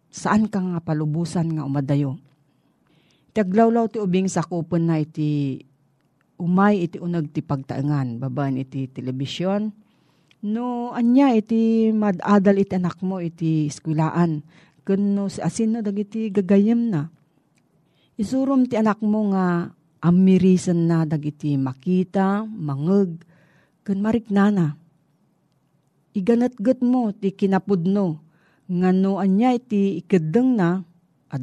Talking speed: 120 wpm